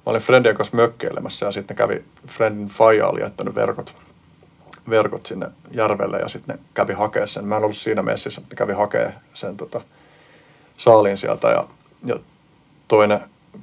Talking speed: 165 wpm